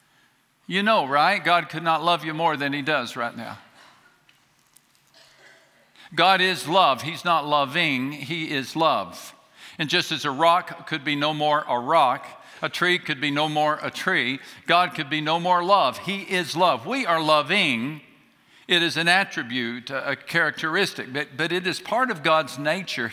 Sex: male